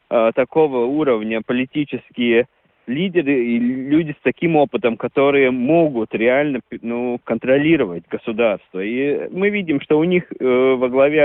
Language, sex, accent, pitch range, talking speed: Russian, male, native, 130-175 Hz, 130 wpm